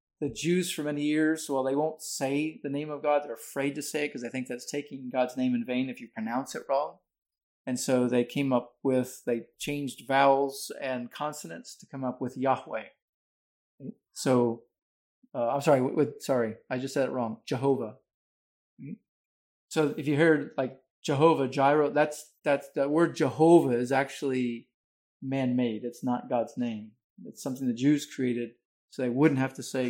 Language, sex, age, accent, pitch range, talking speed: English, male, 40-59, American, 120-150 Hz, 185 wpm